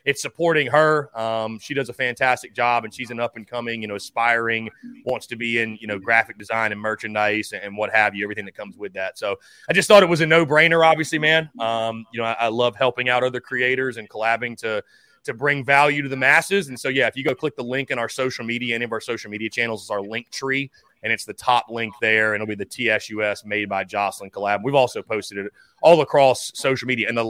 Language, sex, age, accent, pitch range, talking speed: English, male, 30-49, American, 110-150 Hz, 245 wpm